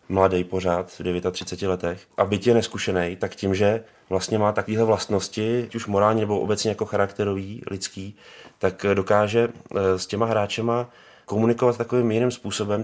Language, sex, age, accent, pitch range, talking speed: Czech, male, 20-39, native, 95-110 Hz, 150 wpm